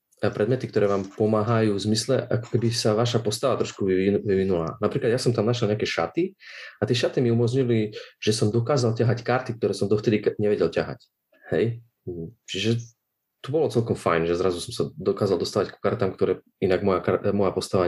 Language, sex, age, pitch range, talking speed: Slovak, male, 30-49, 95-120 Hz, 185 wpm